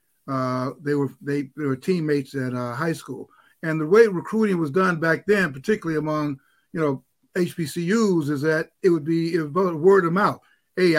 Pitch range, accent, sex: 150-185 Hz, American, male